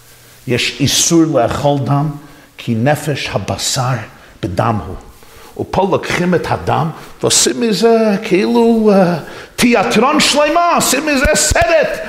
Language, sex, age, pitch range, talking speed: Hebrew, male, 50-69, 125-205 Hz, 110 wpm